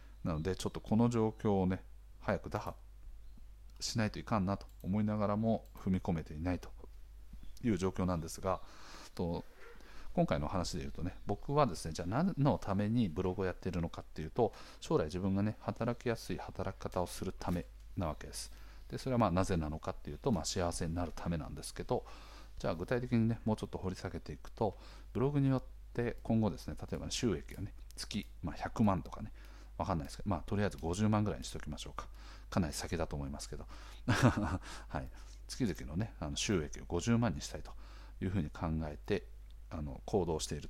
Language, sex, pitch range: Japanese, male, 85-110 Hz